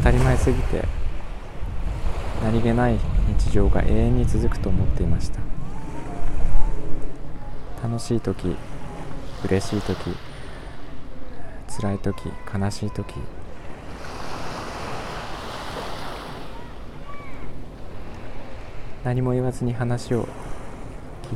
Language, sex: Japanese, male